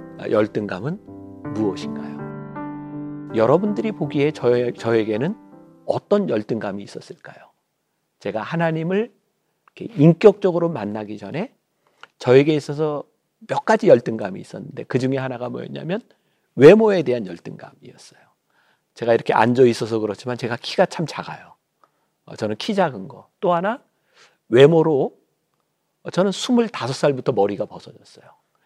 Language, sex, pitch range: Korean, male, 115-185 Hz